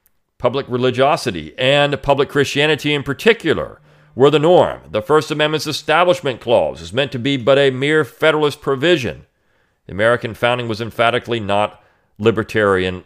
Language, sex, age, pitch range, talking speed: English, male, 40-59, 105-145 Hz, 145 wpm